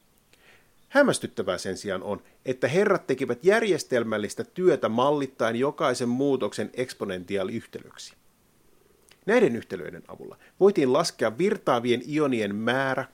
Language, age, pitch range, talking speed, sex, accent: Finnish, 30-49, 120-160 Hz, 95 wpm, male, native